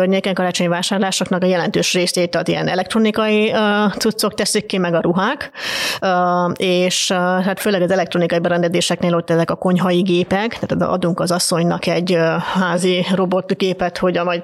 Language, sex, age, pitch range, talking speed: Hungarian, female, 30-49, 175-205 Hz, 150 wpm